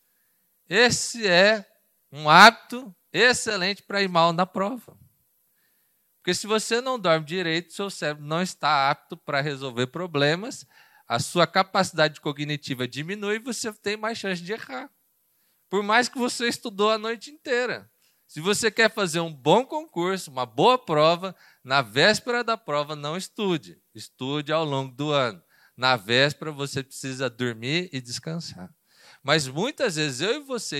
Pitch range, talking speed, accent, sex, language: 150-210 Hz, 150 wpm, Brazilian, male, Portuguese